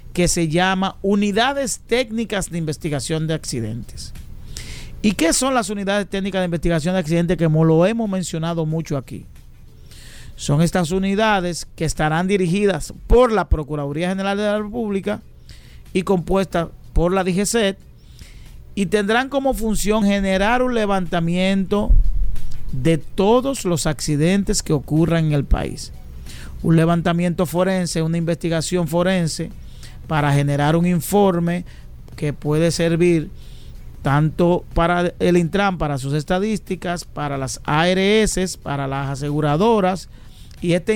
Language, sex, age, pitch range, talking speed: Spanish, male, 50-69, 155-195 Hz, 125 wpm